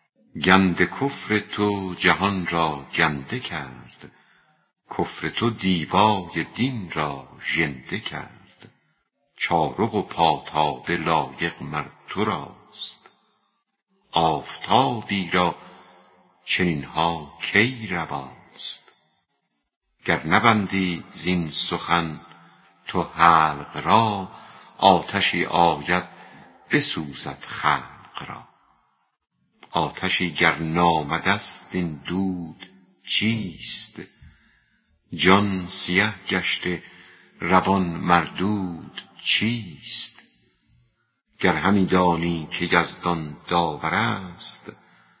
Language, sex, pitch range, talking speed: Persian, female, 85-95 Hz, 75 wpm